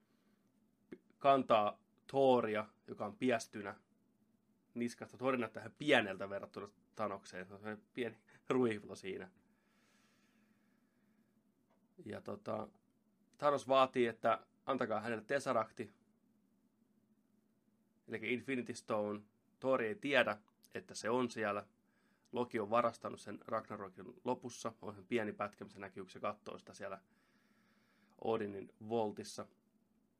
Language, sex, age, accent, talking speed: Finnish, male, 30-49, native, 95 wpm